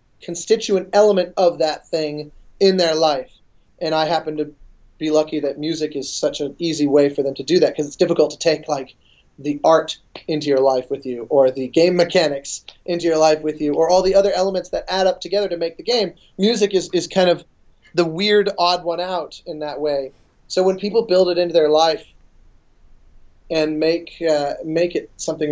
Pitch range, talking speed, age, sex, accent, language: 140-170 Hz, 205 wpm, 30-49, male, American, English